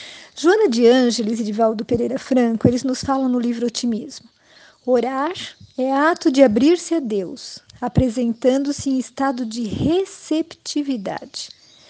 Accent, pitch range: Brazilian, 240-295 Hz